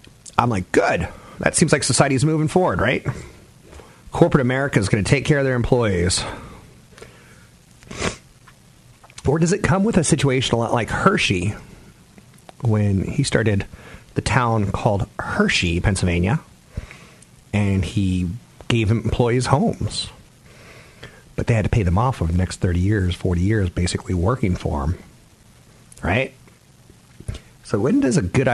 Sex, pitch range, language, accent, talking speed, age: male, 95-125 Hz, English, American, 145 wpm, 40-59